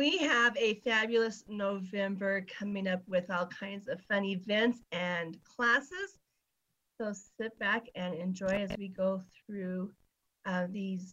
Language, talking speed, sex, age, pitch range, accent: English, 140 wpm, female, 40-59, 195-235 Hz, American